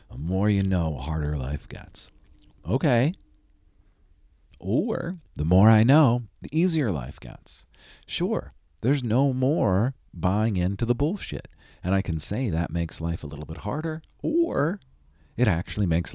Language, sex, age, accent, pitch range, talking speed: English, male, 40-59, American, 75-105 Hz, 150 wpm